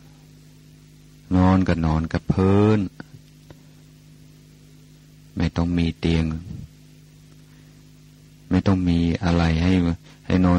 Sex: male